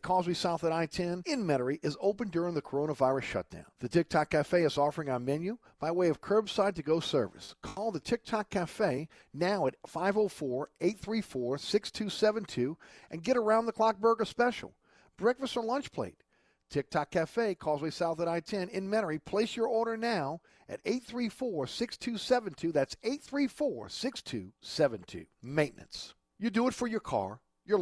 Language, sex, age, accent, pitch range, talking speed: English, male, 50-69, American, 160-235 Hz, 145 wpm